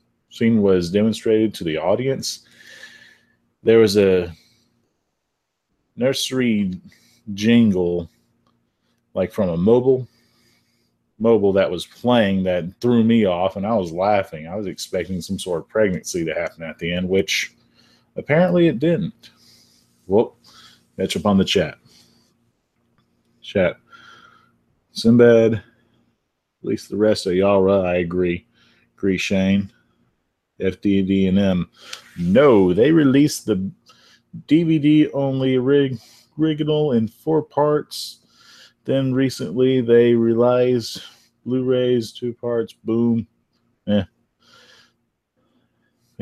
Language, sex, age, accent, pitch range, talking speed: English, male, 30-49, American, 95-125 Hz, 105 wpm